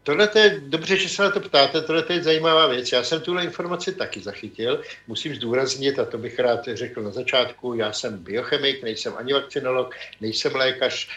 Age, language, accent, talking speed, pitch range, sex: 60-79, Czech, native, 200 wpm, 115-140 Hz, male